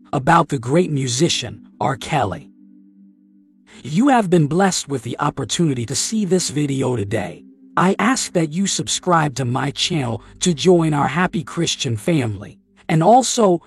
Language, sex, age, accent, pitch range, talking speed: English, male, 50-69, American, 125-180 Hz, 150 wpm